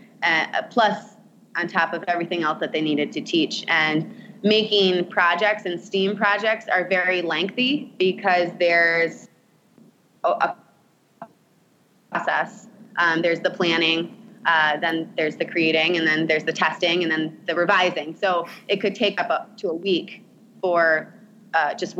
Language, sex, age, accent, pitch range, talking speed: English, female, 20-39, American, 160-205 Hz, 145 wpm